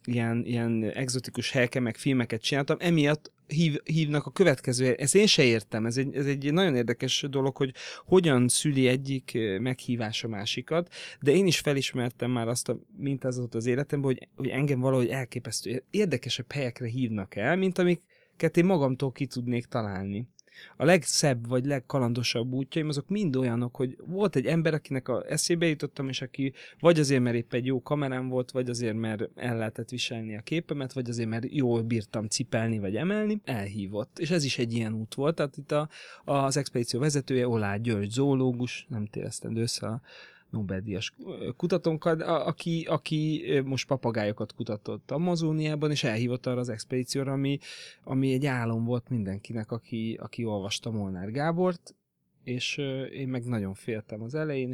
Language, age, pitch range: Hungarian, 30-49, 115-150 Hz